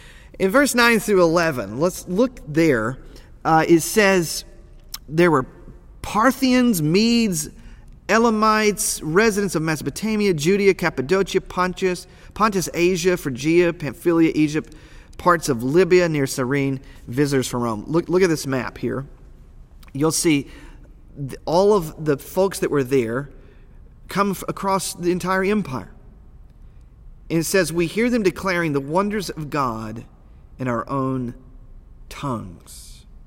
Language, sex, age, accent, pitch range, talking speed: English, male, 40-59, American, 125-180 Hz, 130 wpm